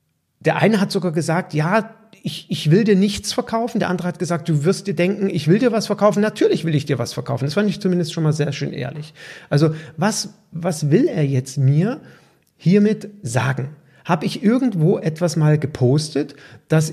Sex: male